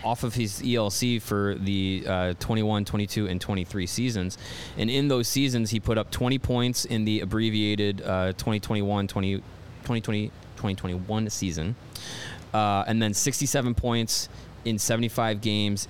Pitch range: 100-125 Hz